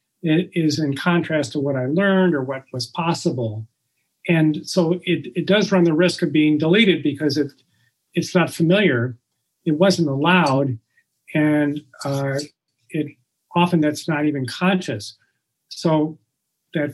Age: 40-59